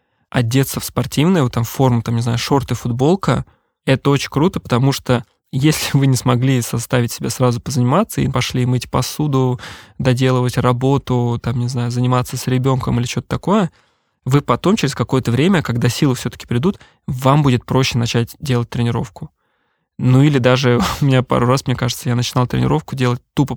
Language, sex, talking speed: Russian, male, 170 wpm